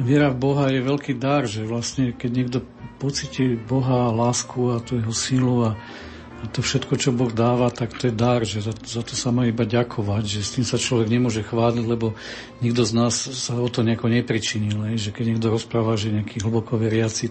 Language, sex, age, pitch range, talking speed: Slovak, male, 50-69, 110-120 Hz, 205 wpm